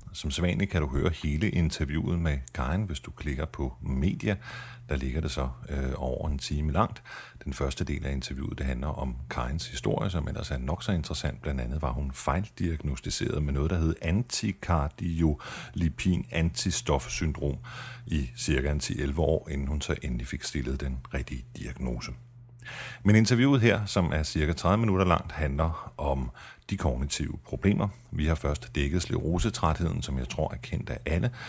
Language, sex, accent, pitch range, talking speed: Danish, male, native, 70-90 Hz, 170 wpm